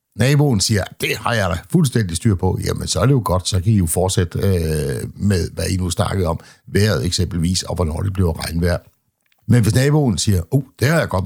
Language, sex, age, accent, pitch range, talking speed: Danish, male, 60-79, native, 90-115 Hz, 230 wpm